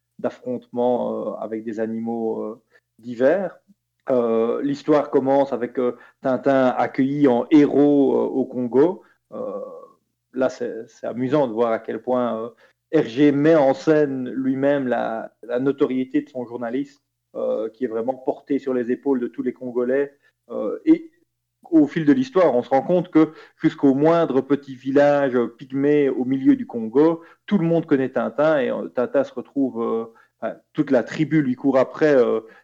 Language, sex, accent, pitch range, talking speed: French, male, French, 120-145 Hz, 165 wpm